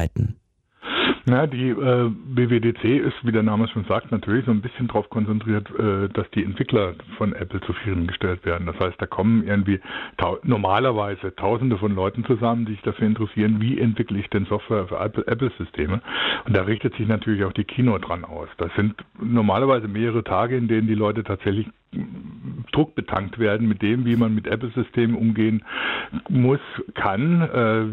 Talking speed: 175 wpm